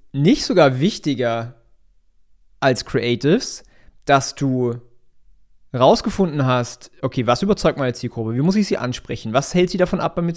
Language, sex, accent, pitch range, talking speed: German, male, German, 120-180 Hz, 150 wpm